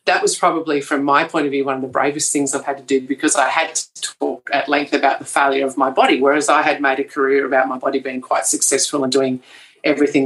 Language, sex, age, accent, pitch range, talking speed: English, female, 40-59, Australian, 140-160 Hz, 265 wpm